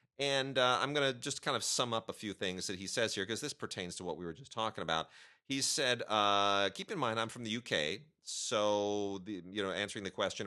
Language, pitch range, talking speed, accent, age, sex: English, 90-120 Hz, 250 wpm, American, 40-59, male